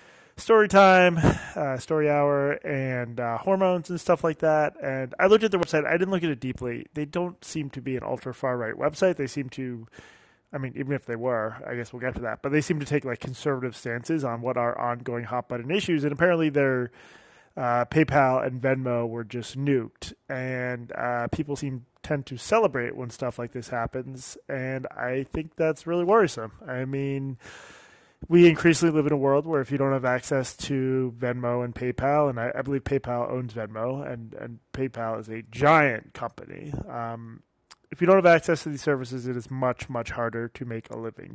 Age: 20-39